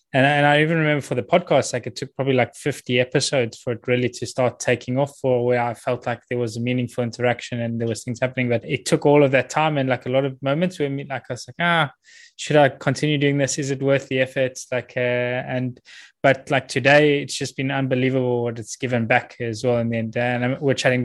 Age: 20-39